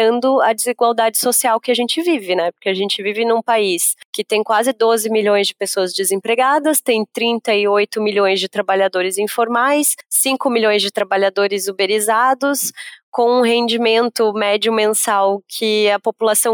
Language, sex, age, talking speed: Portuguese, female, 20-39, 150 wpm